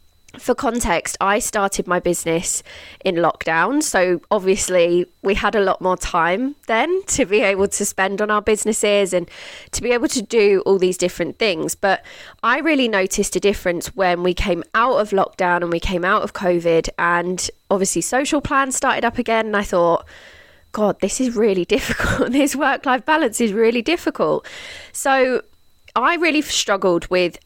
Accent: British